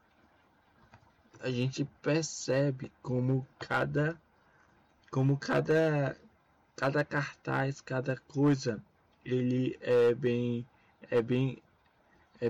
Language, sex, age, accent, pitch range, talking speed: Portuguese, male, 20-39, Brazilian, 125-145 Hz, 80 wpm